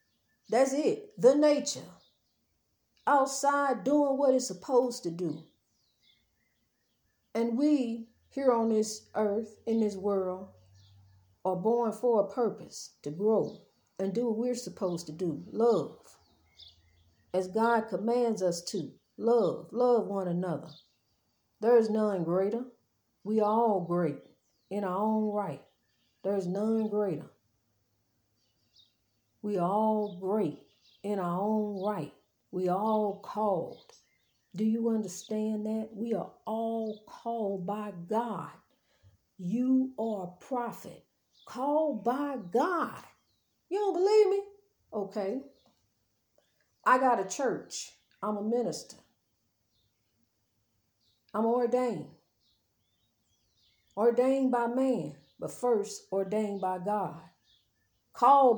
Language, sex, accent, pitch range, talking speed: English, female, American, 155-235 Hz, 115 wpm